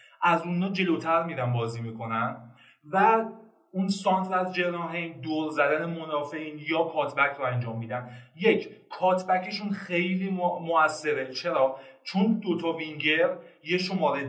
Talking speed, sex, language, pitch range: 125 wpm, male, Persian, 145-195 Hz